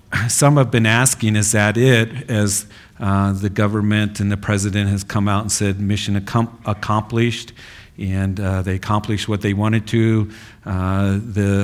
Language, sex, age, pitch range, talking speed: English, male, 50-69, 100-115 Hz, 155 wpm